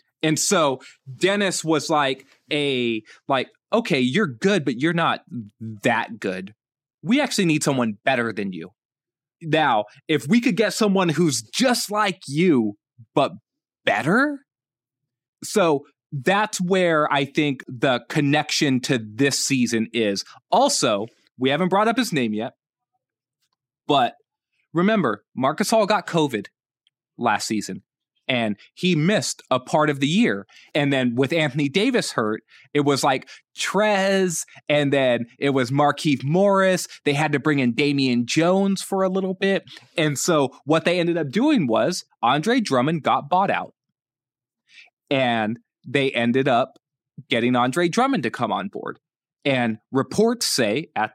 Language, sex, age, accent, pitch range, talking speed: English, male, 20-39, American, 130-185 Hz, 145 wpm